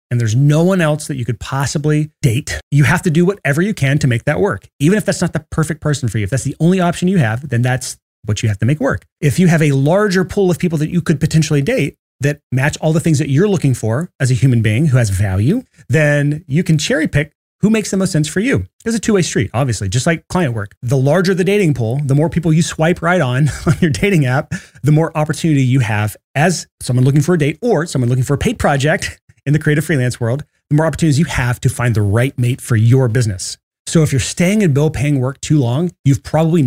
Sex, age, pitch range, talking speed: male, 30-49, 125-165 Hz, 260 wpm